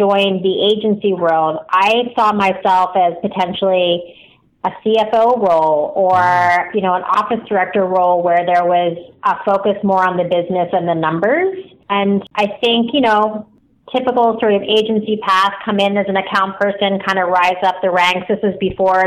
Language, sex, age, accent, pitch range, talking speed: English, female, 30-49, American, 180-210 Hz, 175 wpm